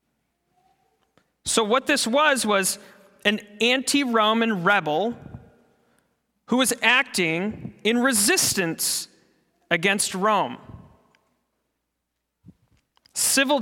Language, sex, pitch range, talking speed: English, male, 185-265 Hz, 70 wpm